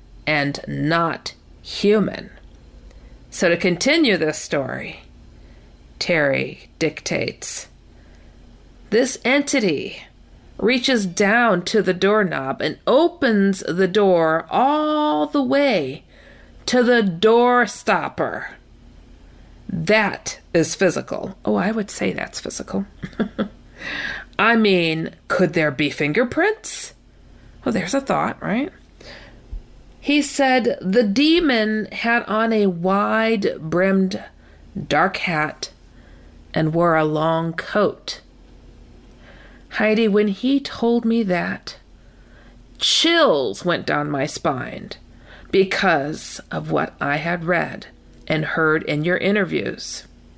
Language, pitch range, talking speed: English, 155-230 Hz, 100 wpm